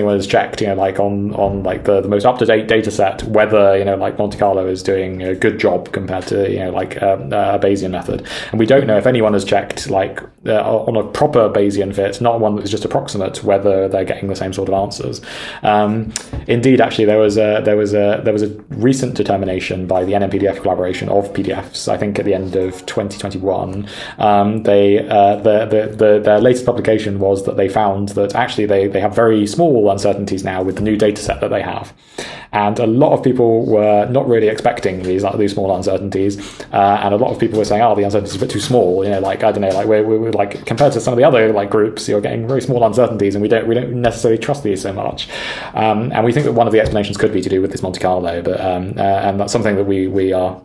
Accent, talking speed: British, 250 wpm